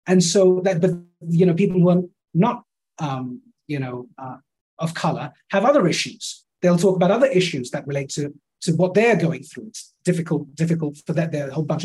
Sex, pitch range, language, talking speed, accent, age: male, 160-210 Hz, English, 185 wpm, British, 30-49